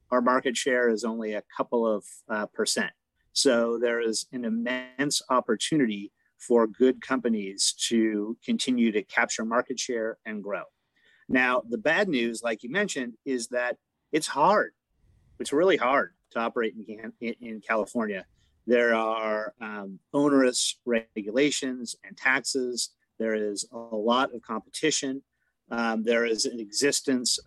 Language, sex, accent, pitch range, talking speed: English, male, American, 110-130 Hz, 140 wpm